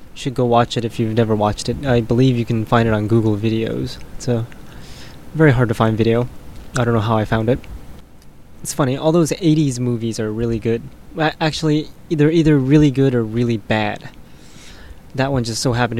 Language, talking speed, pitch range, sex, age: English, 205 wpm, 115-140 Hz, male, 20-39